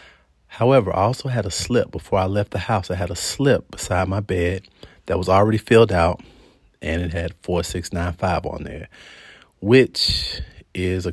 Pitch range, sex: 85-95 Hz, male